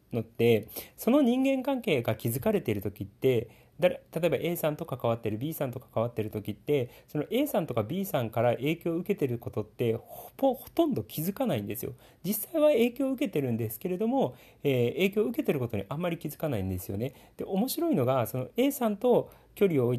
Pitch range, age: 115-195 Hz, 40-59